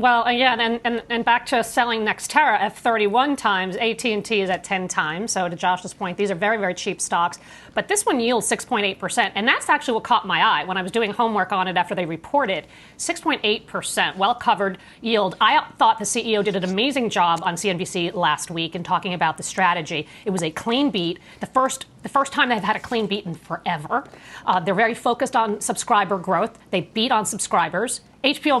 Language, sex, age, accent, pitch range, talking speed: English, female, 40-59, American, 190-250 Hz, 205 wpm